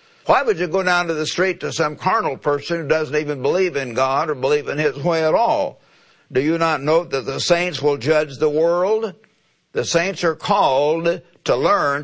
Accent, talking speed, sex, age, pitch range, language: American, 210 wpm, male, 60-79, 145-175 Hz, English